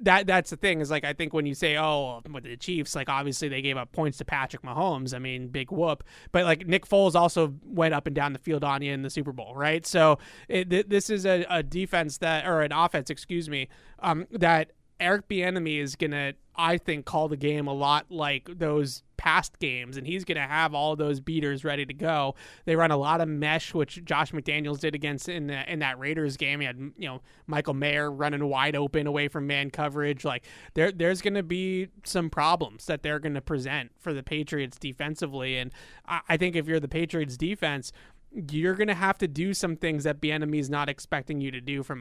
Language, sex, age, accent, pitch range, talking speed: English, male, 30-49, American, 145-165 Hz, 225 wpm